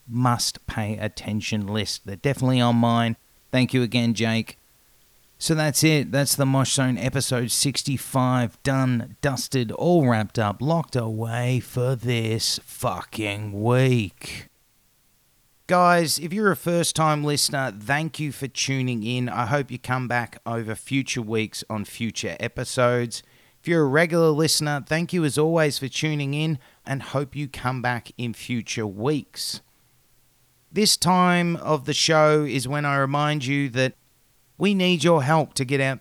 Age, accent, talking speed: 30-49, Australian, 155 wpm